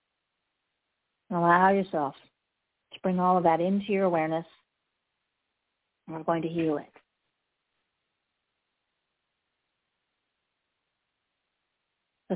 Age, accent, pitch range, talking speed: 50-69, American, 165-200 Hz, 85 wpm